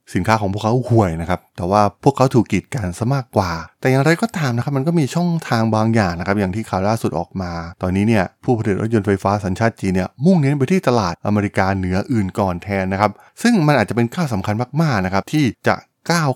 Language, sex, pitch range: Thai, male, 95-120 Hz